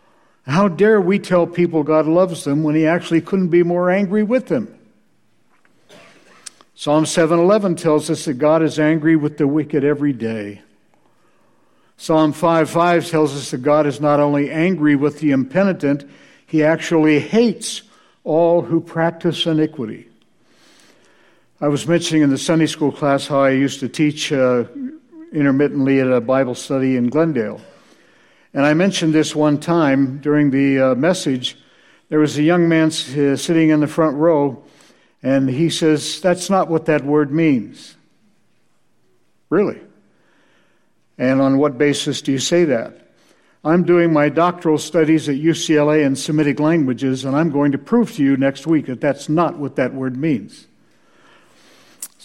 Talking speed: 155 wpm